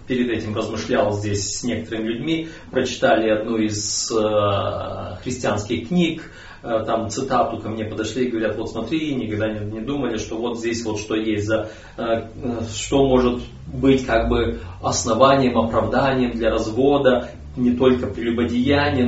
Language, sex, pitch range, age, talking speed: Russian, male, 105-125 Hz, 30-49, 150 wpm